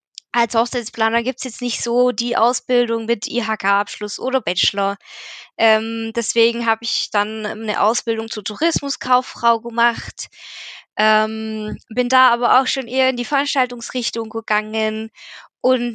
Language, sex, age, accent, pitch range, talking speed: German, female, 20-39, German, 215-245 Hz, 130 wpm